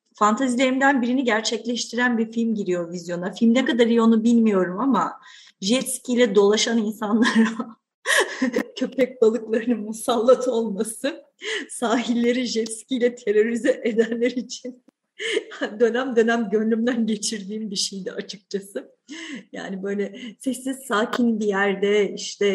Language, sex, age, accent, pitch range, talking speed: Turkish, female, 40-59, native, 200-245 Hz, 110 wpm